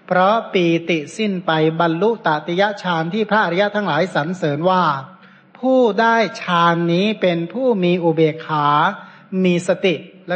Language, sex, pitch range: Thai, male, 165-210 Hz